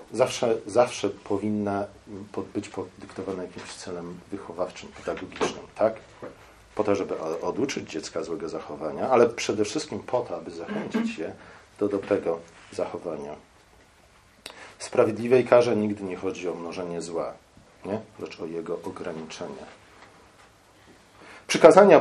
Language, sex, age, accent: Polish, male, 40-59, native